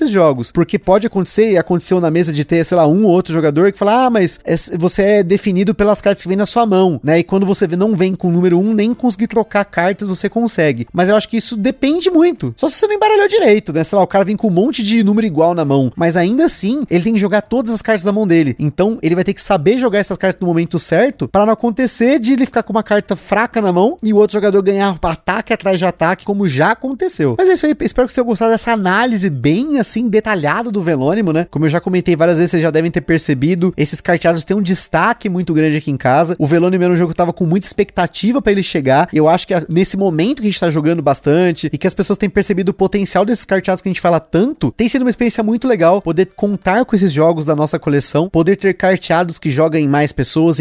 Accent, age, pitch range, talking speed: Brazilian, 30-49, 165-215 Hz, 265 wpm